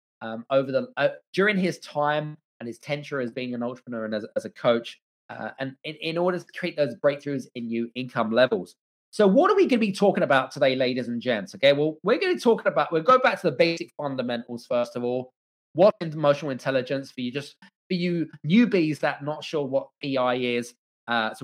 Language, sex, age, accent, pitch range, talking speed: English, male, 20-39, British, 125-185 Hz, 225 wpm